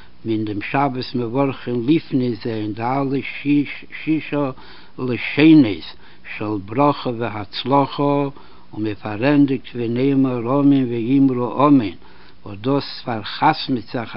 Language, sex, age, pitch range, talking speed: Hebrew, male, 60-79, 115-140 Hz, 95 wpm